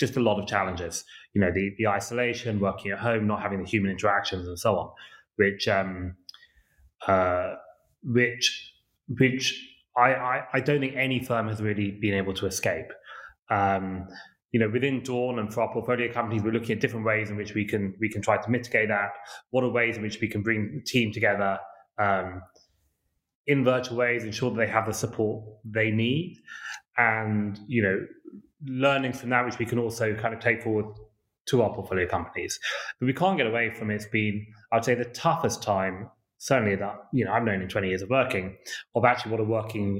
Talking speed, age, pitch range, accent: 200 wpm, 20-39, 100-125 Hz, British